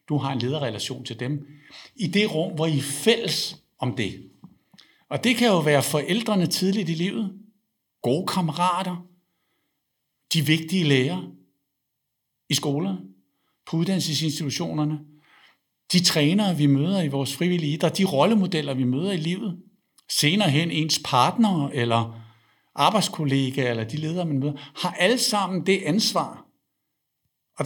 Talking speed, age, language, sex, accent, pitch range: 135 wpm, 60-79, Danish, male, native, 130-180 Hz